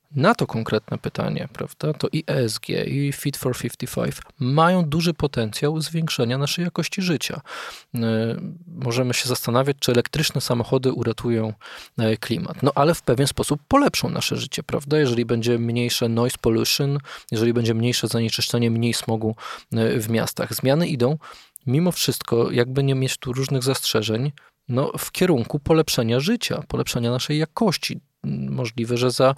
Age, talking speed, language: 20-39, 140 wpm, Polish